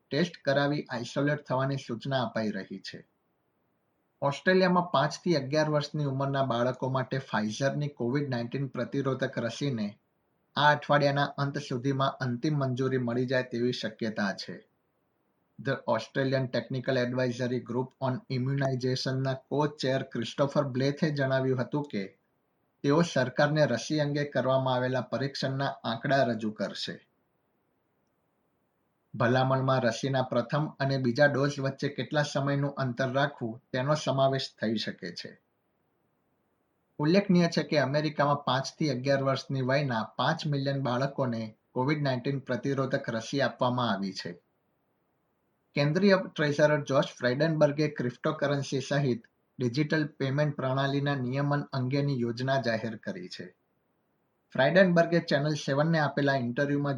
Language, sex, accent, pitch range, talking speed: Gujarati, male, native, 125-145 Hz, 60 wpm